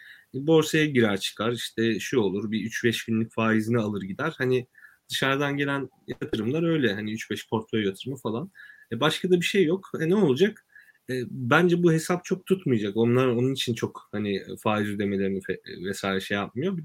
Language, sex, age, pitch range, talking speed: Turkish, male, 30-49, 110-165 Hz, 170 wpm